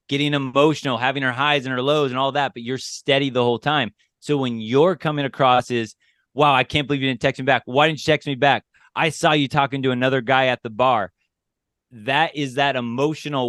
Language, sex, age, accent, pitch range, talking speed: English, male, 30-49, American, 120-140 Hz, 230 wpm